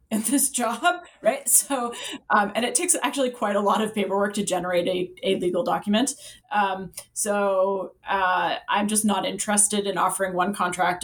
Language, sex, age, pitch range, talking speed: English, female, 20-39, 185-235 Hz, 175 wpm